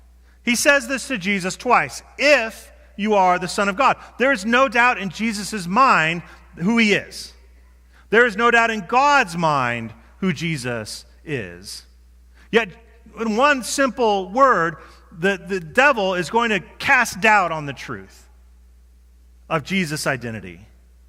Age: 40-59